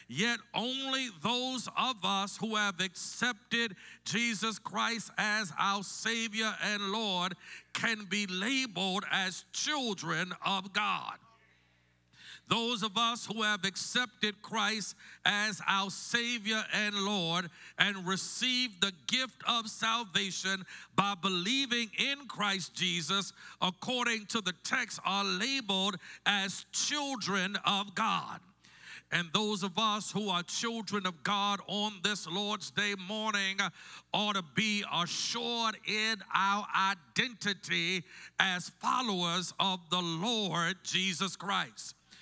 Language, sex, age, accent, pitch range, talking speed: English, male, 50-69, American, 190-225 Hz, 120 wpm